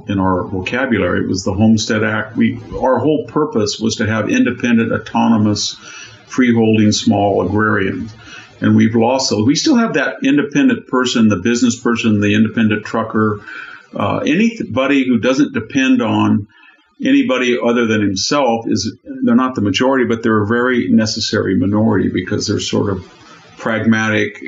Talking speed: 150 wpm